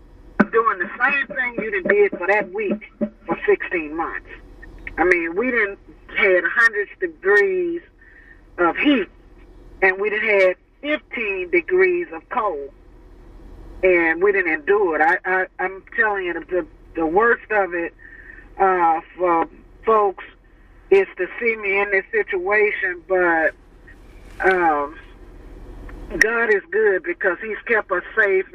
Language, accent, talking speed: English, American, 135 wpm